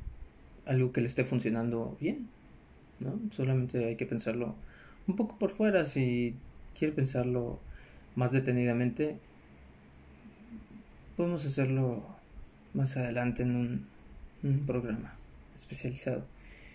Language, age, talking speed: Spanish, 20-39, 105 wpm